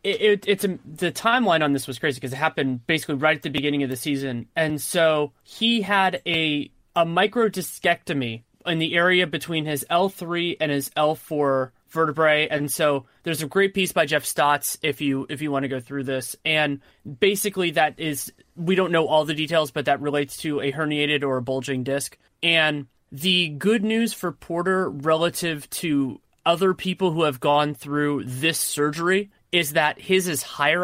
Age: 30-49